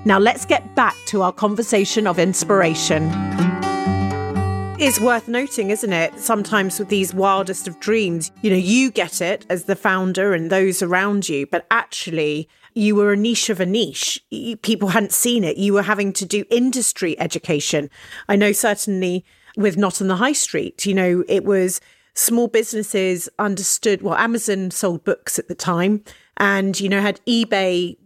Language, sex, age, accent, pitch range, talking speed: English, female, 30-49, British, 185-225 Hz, 170 wpm